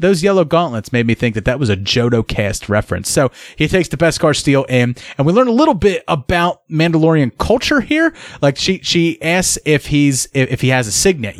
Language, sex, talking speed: English, male, 230 wpm